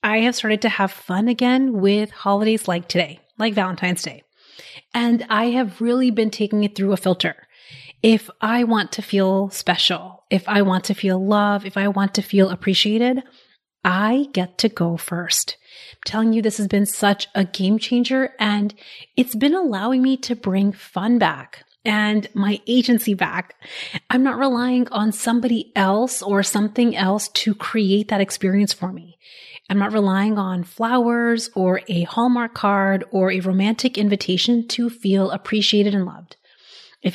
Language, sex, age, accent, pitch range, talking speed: English, female, 30-49, American, 195-235 Hz, 170 wpm